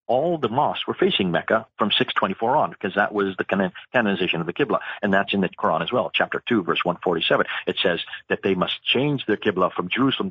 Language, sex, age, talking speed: English, male, 40-59, 220 wpm